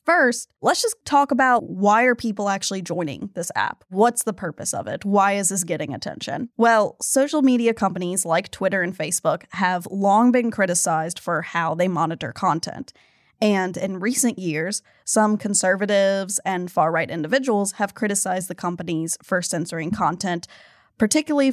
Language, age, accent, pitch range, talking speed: English, 10-29, American, 180-230 Hz, 155 wpm